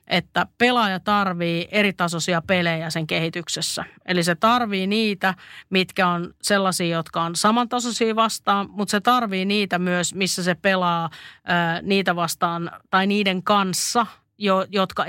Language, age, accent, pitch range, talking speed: Finnish, 30-49, native, 175-205 Hz, 125 wpm